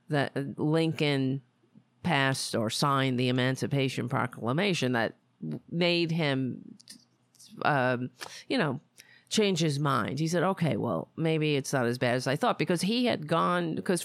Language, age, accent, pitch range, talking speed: English, 40-59, American, 130-170 Hz, 145 wpm